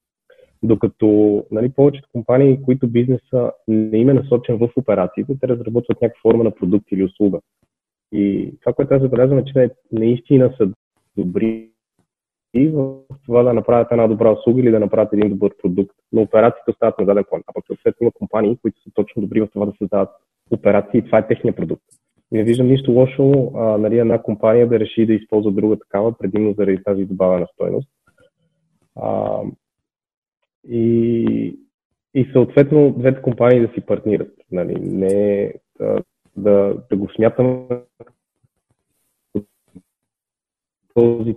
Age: 30-49